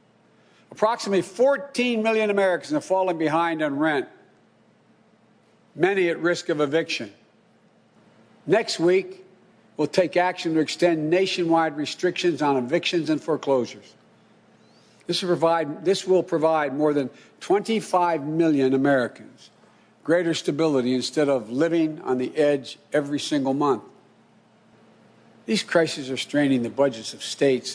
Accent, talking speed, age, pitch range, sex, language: American, 120 wpm, 60-79, 135-170 Hz, male, English